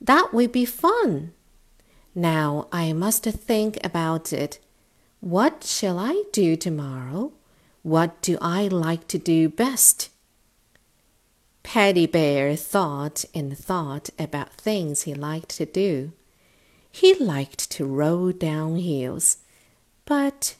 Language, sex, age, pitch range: Chinese, female, 50-69, 155-215 Hz